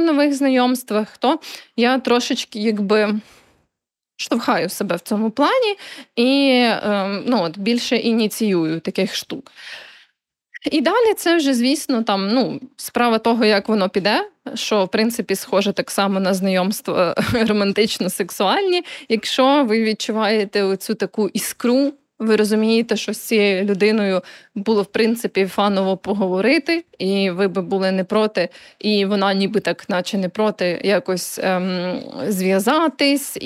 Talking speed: 130 wpm